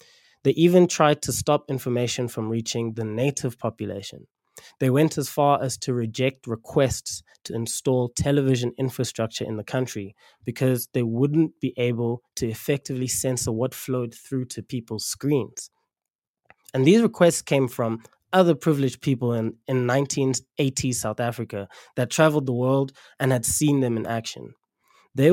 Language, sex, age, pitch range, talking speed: English, male, 20-39, 120-145 Hz, 150 wpm